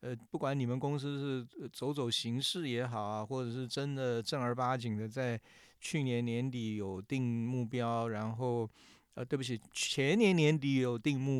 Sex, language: male, Chinese